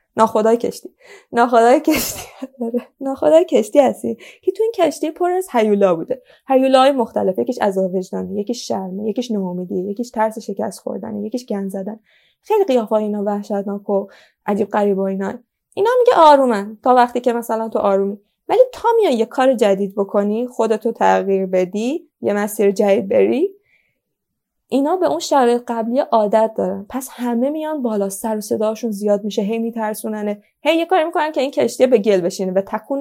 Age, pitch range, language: 20-39, 205-265 Hz, Persian